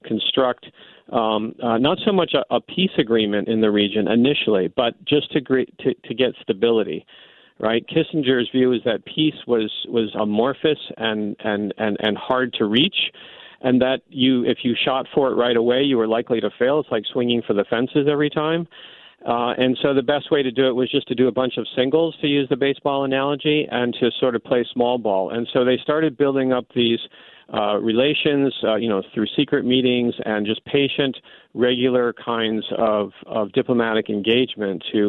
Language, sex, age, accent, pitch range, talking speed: English, male, 50-69, American, 110-135 Hz, 195 wpm